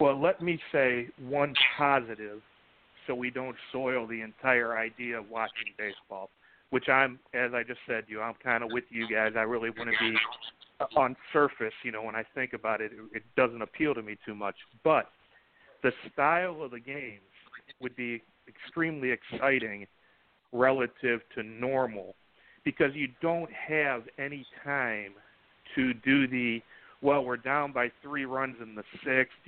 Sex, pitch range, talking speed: male, 120-145 Hz, 170 wpm